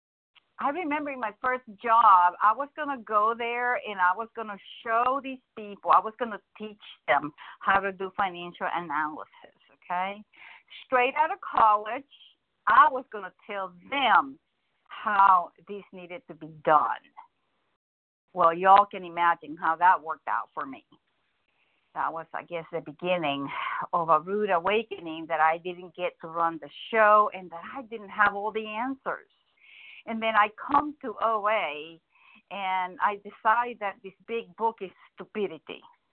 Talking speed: 165 wpm